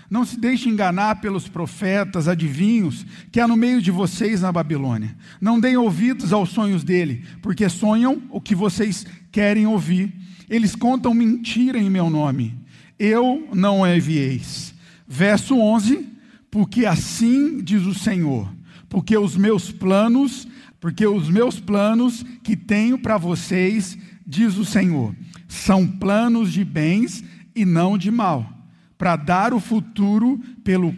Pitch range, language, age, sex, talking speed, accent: 175-215 Hz, Portuguese, 50-69, male, 140 wpm, Brazilian